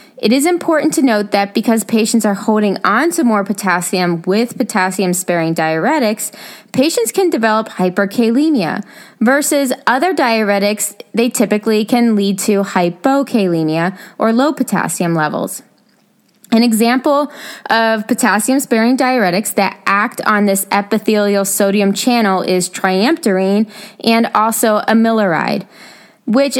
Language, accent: English, American